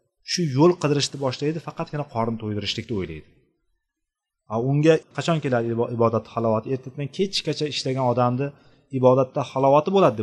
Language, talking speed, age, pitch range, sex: Russian, 210 wpm, 30-49, 120-155 Hz, male